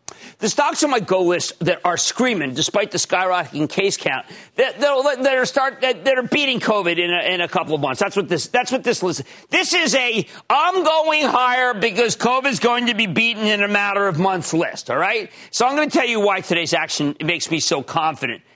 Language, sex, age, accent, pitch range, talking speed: English, male, 40-59, American, 170-255 Hz, 220 wpm